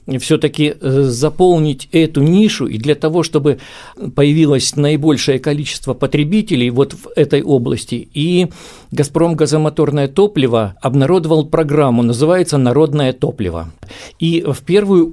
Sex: male